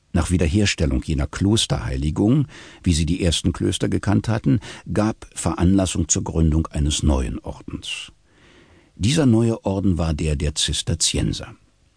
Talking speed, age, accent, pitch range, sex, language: 125 wpm, 60-79, German, 80-100 Hz, male, German